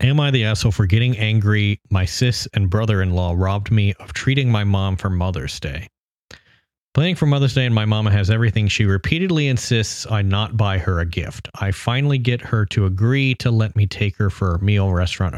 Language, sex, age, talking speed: English, male, 30-49, 205 wpm